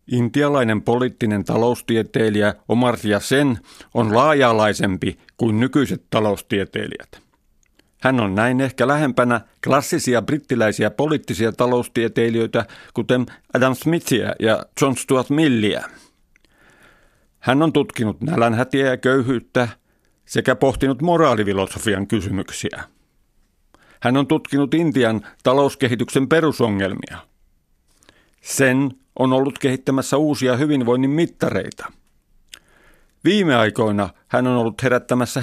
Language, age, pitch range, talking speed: Finnish, 50-69, 115-140 Hz, 95 wpm